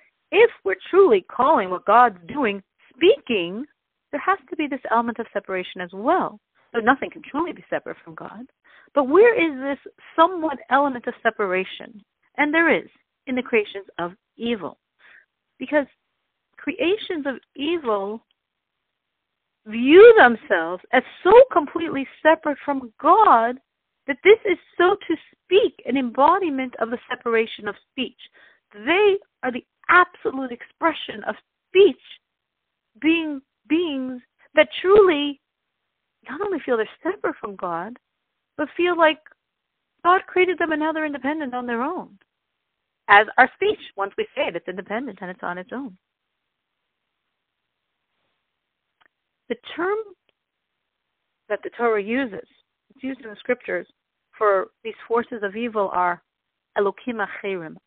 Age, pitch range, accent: 40-59, 225-335 Hz, American